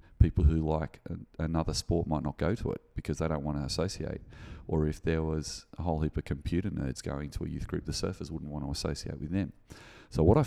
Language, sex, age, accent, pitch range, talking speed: English, male, 30-49, Australian, 75-85 Hz, 240 wpm